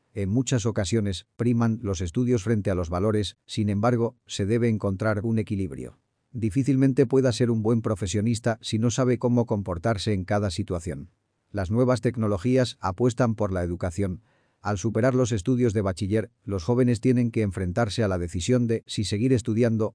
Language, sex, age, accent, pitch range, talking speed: Spanish, male, 40-59, Spanish, 100-120 Hz, 170 wpm